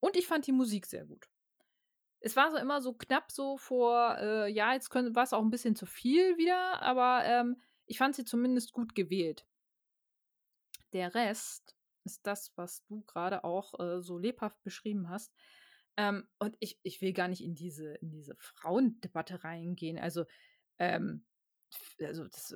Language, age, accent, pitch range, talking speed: German, 20-39, German, 175-245 Hz, 170 wpm